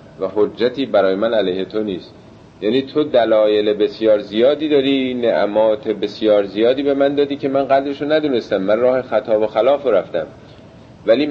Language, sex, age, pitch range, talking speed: Persian, male, 50-69, 105-130 Hz, 165 wpm